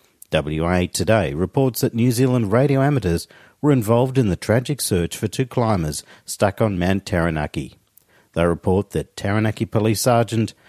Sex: male